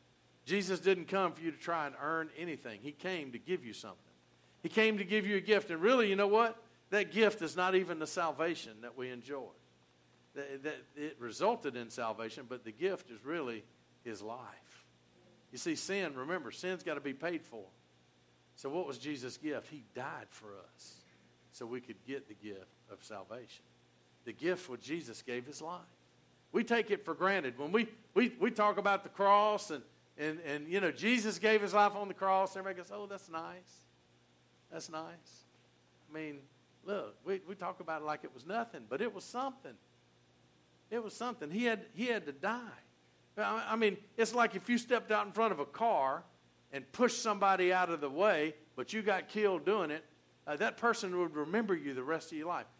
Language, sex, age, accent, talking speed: English, male, 50-69, American, 205 wpm